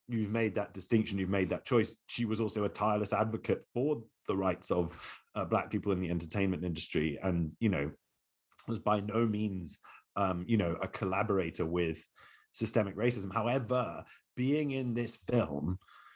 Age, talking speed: 30-49, 165 wpm